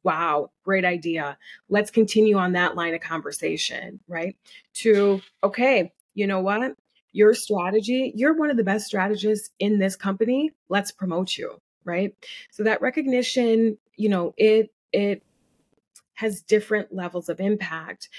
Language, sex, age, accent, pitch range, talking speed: English, female, 30-49, American, 185-235 Hz, 140 wpm